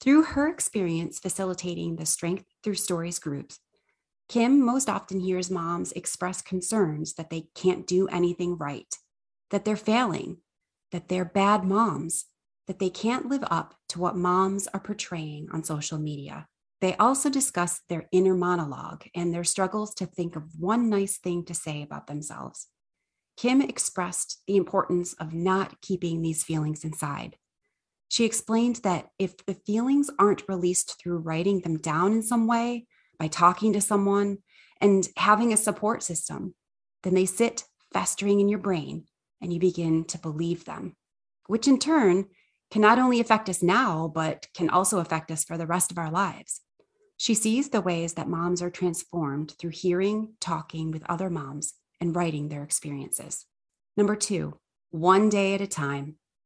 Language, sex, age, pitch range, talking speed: English, female, 30-49, 165-210 Hz, 165 wpm